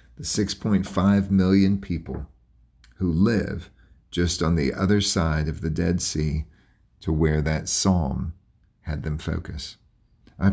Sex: male